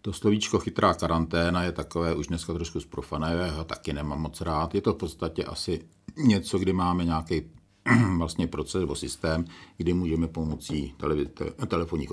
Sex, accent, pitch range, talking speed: male, native, 75-90 Hz, 150 wpm